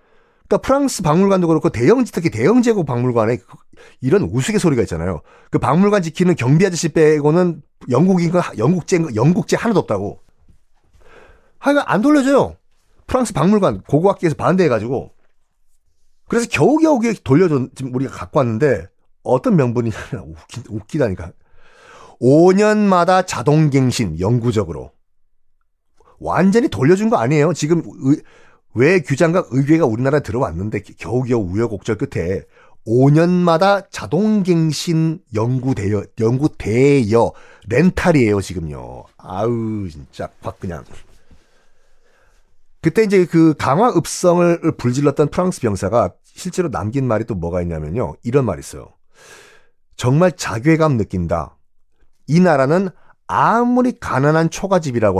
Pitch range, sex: 115-180 Hz, male